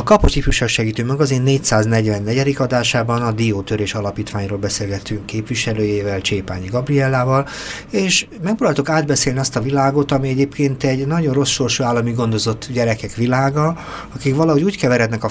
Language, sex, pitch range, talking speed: Hungarian, male, 105-135 Hz, 130 wpm